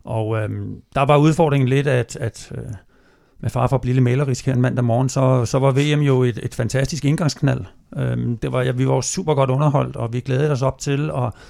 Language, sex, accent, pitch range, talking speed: Danish, male, native, 125-145 Hz, 220 wpm